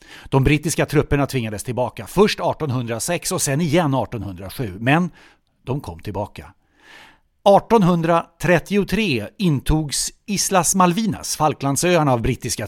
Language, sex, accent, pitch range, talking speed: English, male, Swedish, 120-180 Hz, 105 wpm